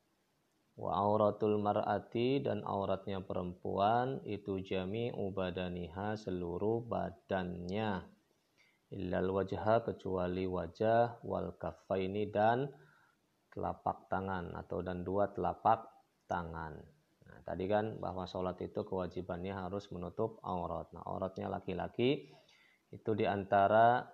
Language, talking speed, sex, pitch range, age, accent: Indonesian, 100 wpm, male, 90-100 Hz, 20-39, native